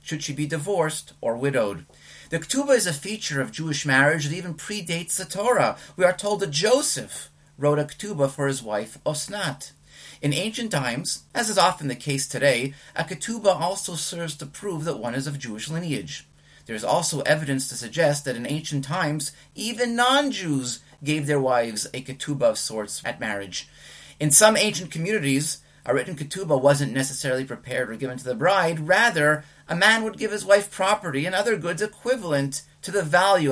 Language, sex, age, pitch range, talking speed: English, male, 30-49, 135-185 Hz, 185 wpm